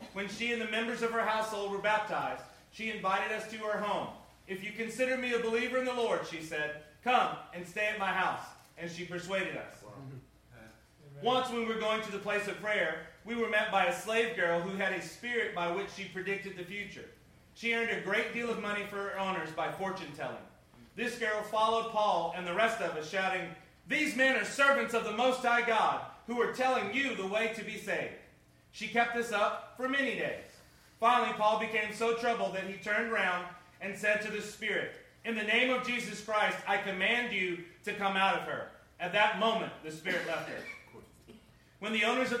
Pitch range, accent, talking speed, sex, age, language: 190-230 Hz, American, 215 wpm, male, 30-49, English